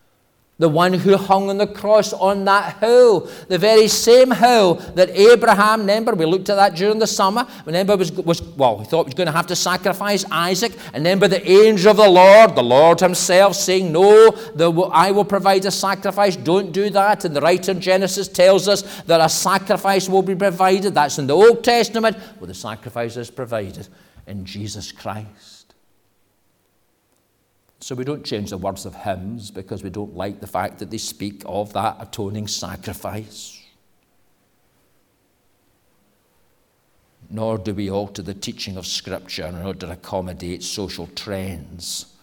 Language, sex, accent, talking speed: English, male, British, 170 wpm